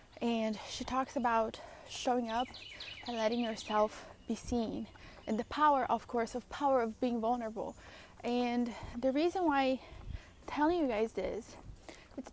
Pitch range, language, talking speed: 225-270 Hz, English, 150 wpm